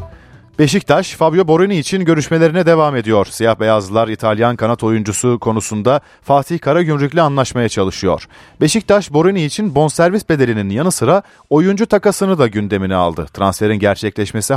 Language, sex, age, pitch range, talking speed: Turkish, male, 40-59, 100-150 Hz, 130 wpm